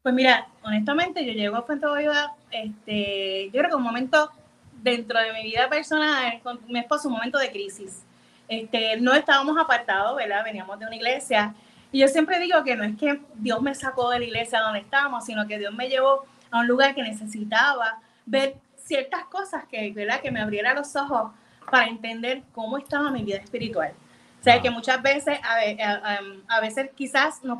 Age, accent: 30-49, American